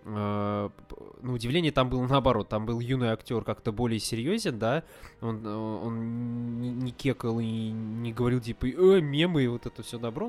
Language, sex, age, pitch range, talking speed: Russian, male, 20-39, 105-130 Hz, 165 wpm